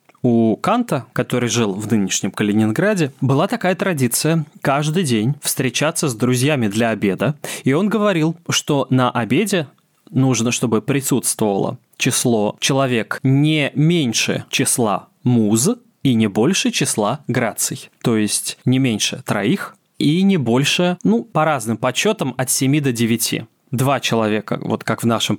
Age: 20-39